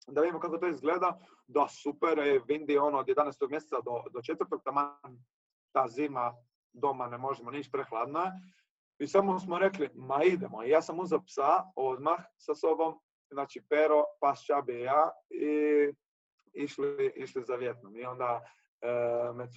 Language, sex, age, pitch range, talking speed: Croatian, male, 30-49, 130-175 Hz, 155 wpm